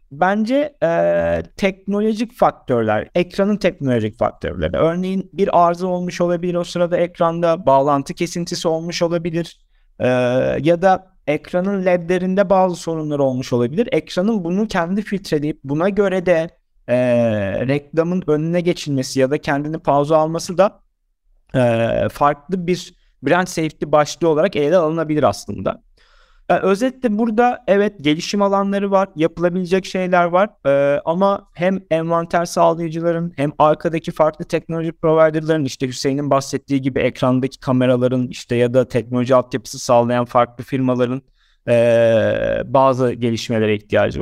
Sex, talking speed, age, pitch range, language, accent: male, 125 wpm, 50-69, 135-185 Hz, Turkish, native